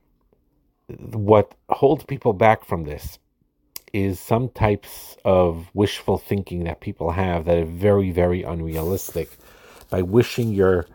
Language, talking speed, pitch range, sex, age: English, 125 wpm, 85-100 Hz, male, 50-69